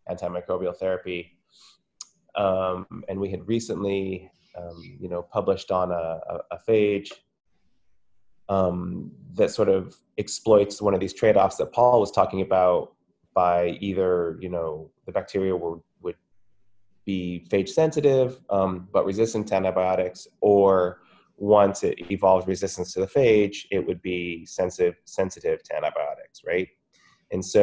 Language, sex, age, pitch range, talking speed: English, male, 20-39, 90-100 Hz, 140 wpm